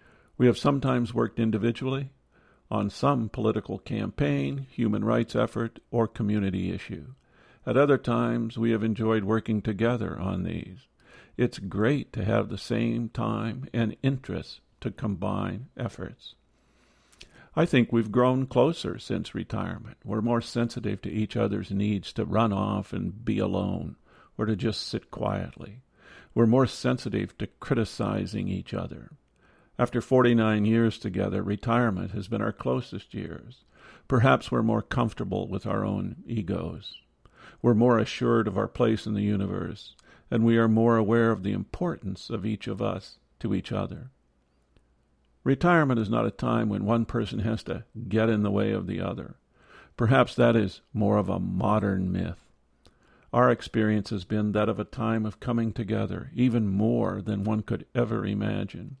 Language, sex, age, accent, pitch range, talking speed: English, male, 50-69, American, 100-120 Hz, 155 wpm